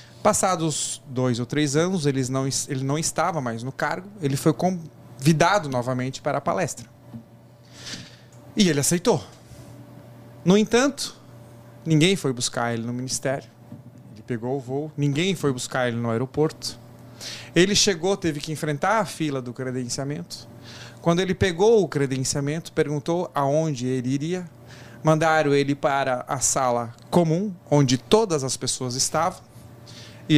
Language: Portuguese